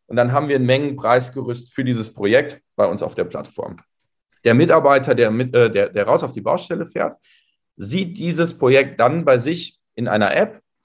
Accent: German